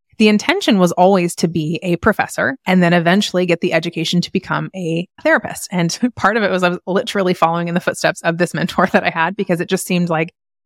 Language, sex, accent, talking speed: English, female, American, 230 wpm